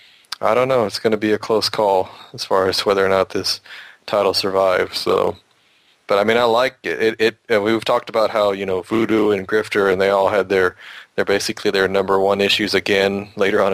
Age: 20-39